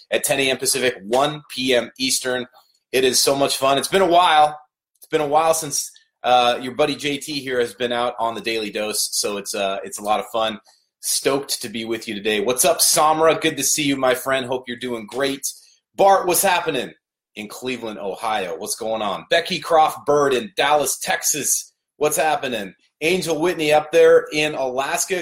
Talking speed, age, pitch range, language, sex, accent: 195 wpm, 30-49, 115-150 Hz, English, male, American